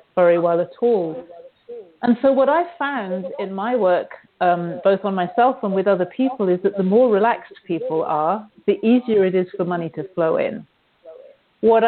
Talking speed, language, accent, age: 185 wpm, English, British, 50-69